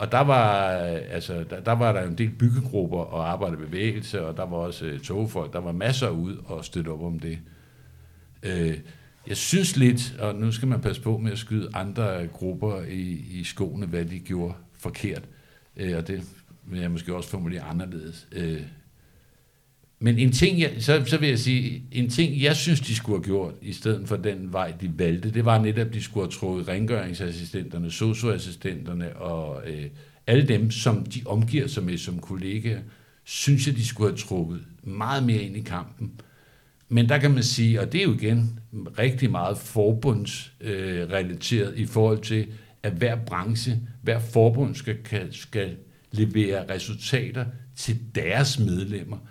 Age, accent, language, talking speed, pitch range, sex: 60-79, native, Danish, 180 wpm, 90-125 Hz, male